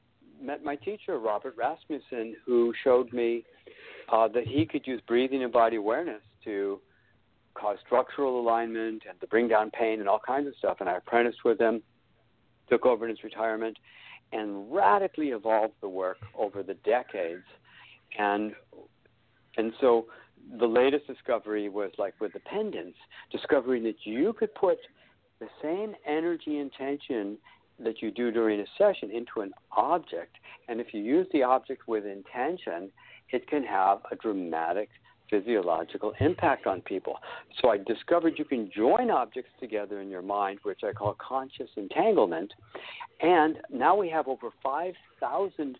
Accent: American